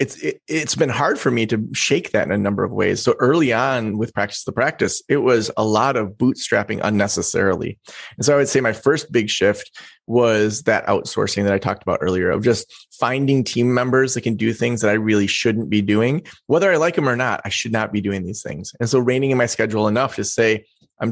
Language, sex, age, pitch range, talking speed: English, male, 20-39, 105-135 Hz, 240 wpm